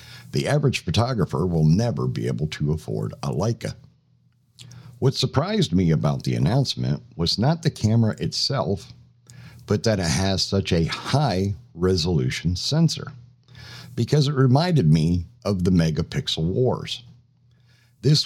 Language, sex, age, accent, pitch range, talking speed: English, male, 50-69, American, 90-130 Hz, 130 wpm